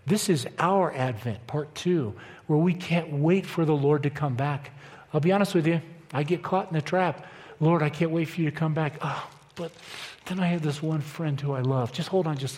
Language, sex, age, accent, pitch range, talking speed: English, male, 50-69, American, 125-165 Hz, 245 wpm